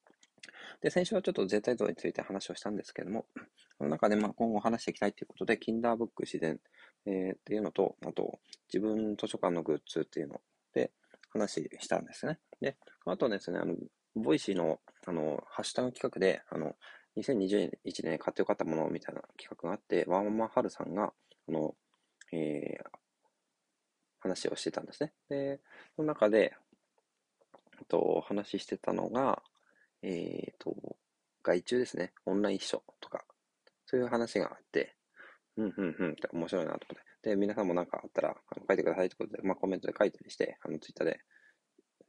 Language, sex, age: Japanese, male, 20-39